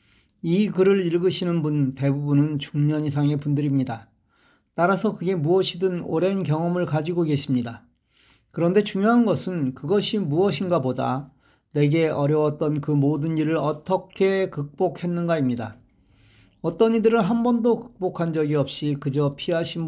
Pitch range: 140-180 Hz